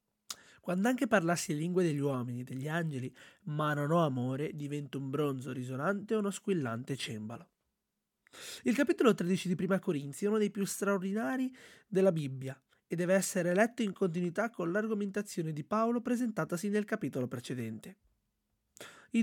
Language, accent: Italian, native